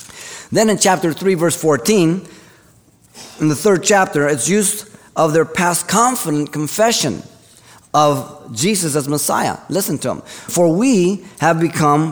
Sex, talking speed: male, 140 wpm